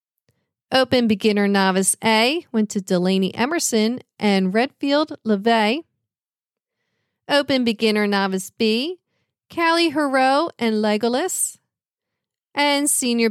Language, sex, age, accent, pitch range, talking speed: English, female, 40-59, American, 210-275 Hz, 95 wpm